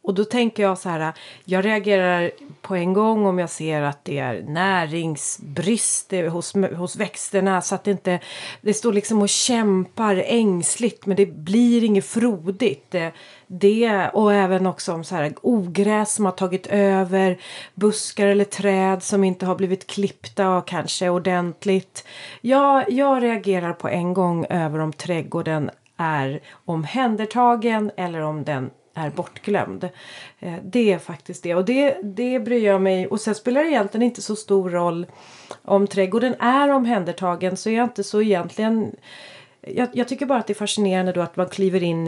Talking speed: 170 wpm